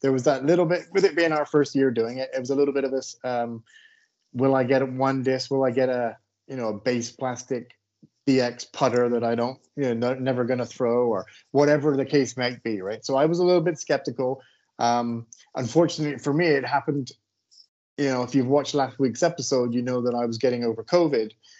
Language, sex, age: English, male, 30-49